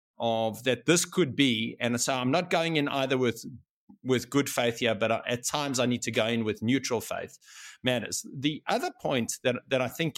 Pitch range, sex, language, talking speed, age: 115-140 Hz, male, English, 220 wpm, 50-69